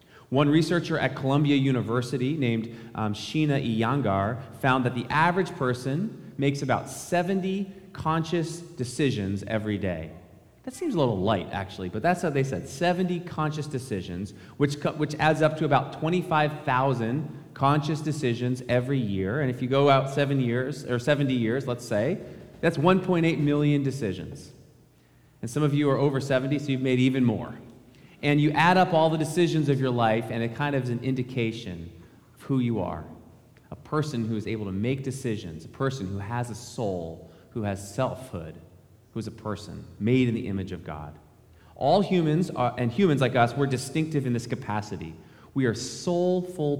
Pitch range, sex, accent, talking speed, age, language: 115-150 Hz, male, American, 175 wpm, 30-49, English